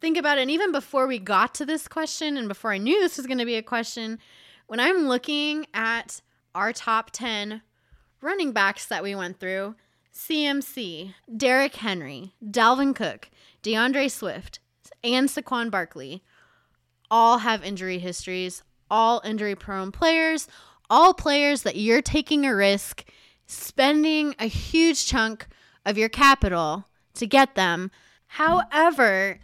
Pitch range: 205-275 Hz